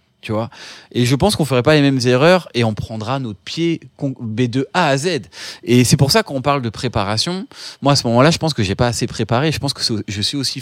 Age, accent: 20-39, French